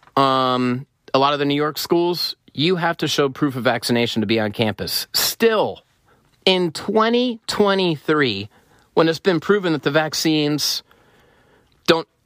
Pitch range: 120-160 Hz